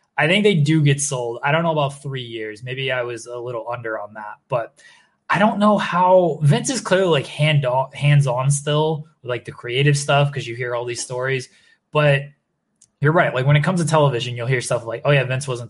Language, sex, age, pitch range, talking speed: English, male, 20-39, 125-165 Hz, 235 wpm